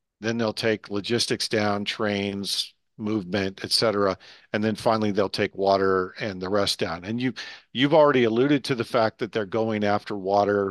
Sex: male